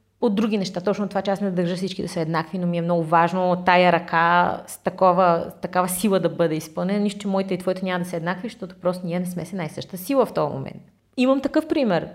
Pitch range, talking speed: 170-200 Hz, 250 wpm